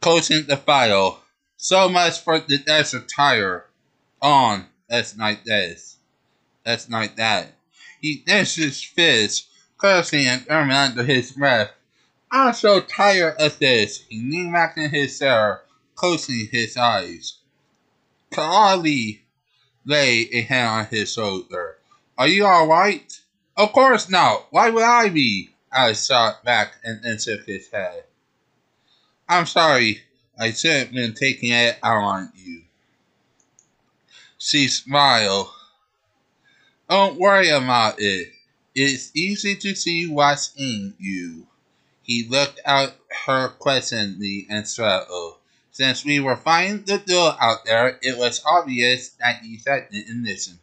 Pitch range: 120-165 Hz